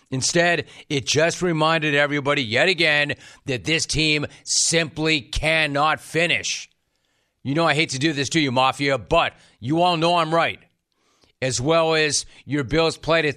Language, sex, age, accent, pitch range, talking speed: English, male, 40-59, American, 145-175 Hz, 160 wpm